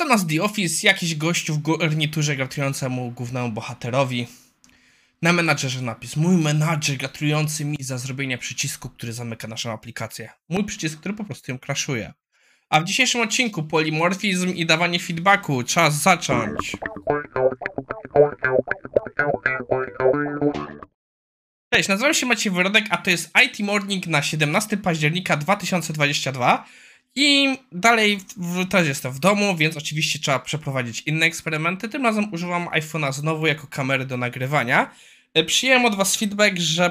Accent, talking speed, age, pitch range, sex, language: native, 135 wpm, 20-39, 135-180 Hz, male, Polish